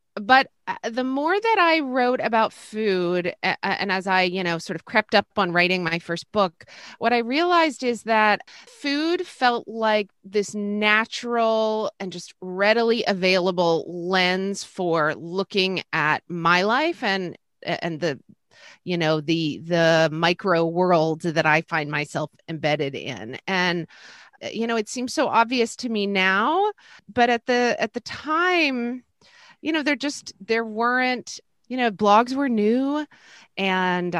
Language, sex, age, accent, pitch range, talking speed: English, female, 30-49, American, 170-225 Hz, 150 wpm